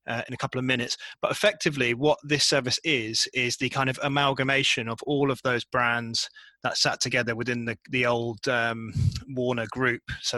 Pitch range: 120-135 Hz